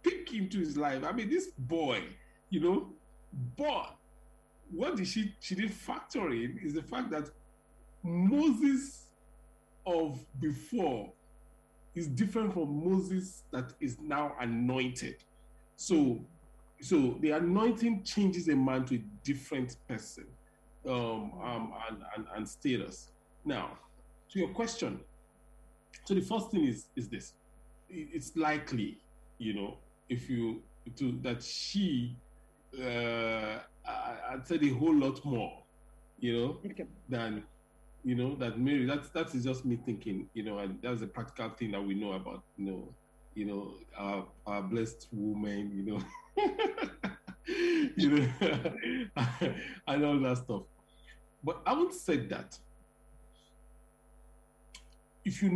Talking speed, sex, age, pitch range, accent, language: 135 wpm, male, 50-69, 120-195 Hz, Nigerian, English